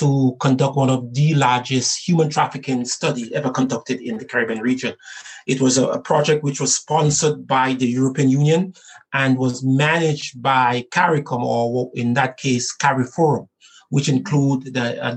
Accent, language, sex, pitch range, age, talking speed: Nigerian, English, male, 125-150 Hz, 30-49, 160 wpm